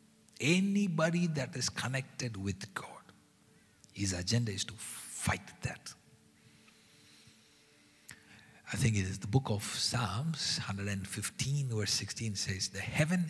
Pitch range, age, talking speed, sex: 100-135 Hz, 50-69, 115 wpm, male